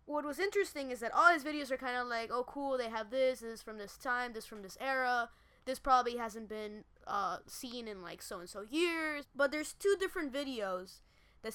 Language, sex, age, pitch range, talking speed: English, female, 20-39, 205-270 Hz, 220 wpm